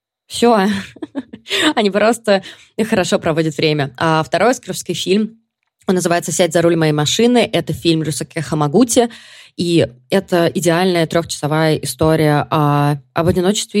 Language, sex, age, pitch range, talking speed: Russian, female, 20-39, 165-205 Hz, 120 wpm